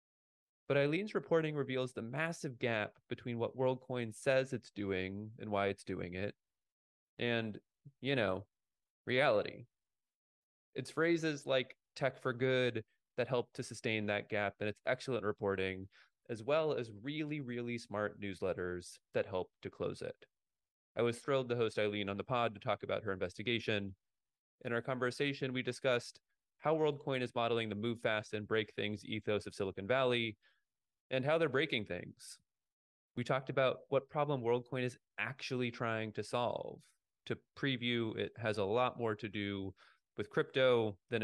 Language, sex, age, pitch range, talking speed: English, male, 20-39, 105-130 Hz, 160 wpm